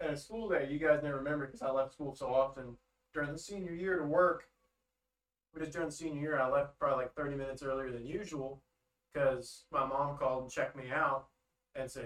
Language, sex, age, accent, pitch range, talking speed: English, male, 20-39, American, 120-145 Hz, 230 wpm